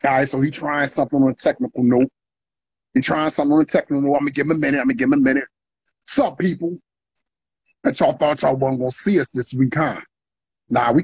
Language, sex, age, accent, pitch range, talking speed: English, male, 30-49, American, 130-185 Hz, 255 wpm